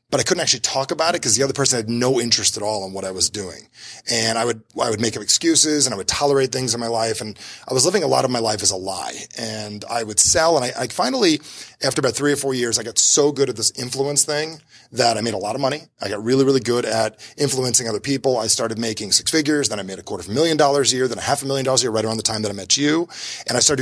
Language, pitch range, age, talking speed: English, 110-140 Hz, 30-49, 305 wpm